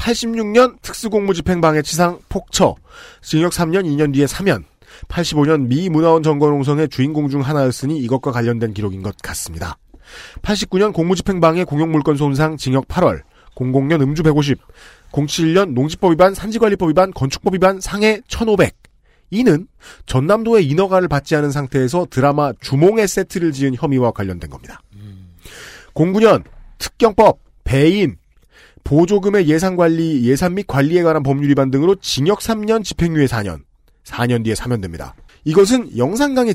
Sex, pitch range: male, 130-195 Hz